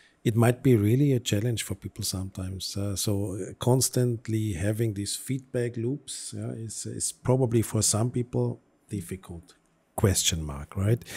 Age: 50-69